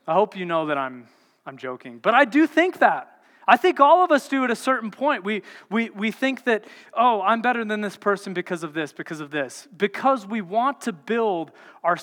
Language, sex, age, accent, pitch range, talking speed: English, male, 30-49, American, 175-230 Hz, 230 wpm